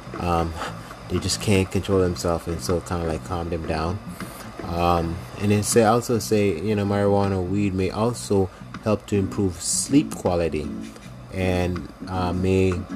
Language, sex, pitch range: English, male, 90-105 Hz